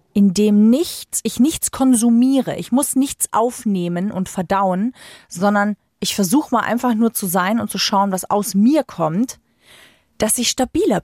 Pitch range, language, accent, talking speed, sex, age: 195-255 Hz, German, German, 165 wpm, female, 30-49